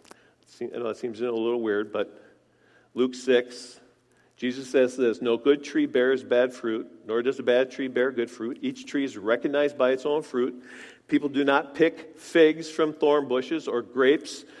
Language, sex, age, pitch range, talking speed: English, male, 50-69, 125-160 Hz, 185 wpm